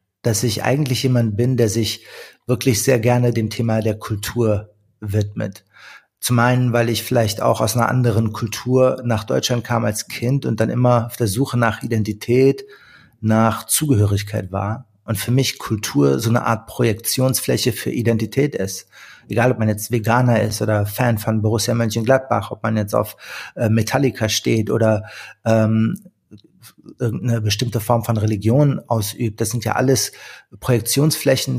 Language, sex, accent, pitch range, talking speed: German, male, German, 110-125 Hz, 155 wpm